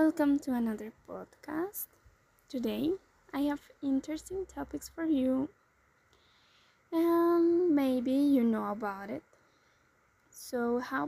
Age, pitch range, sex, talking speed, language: 20-39, 250-310 Hz, female, 105 wpm, English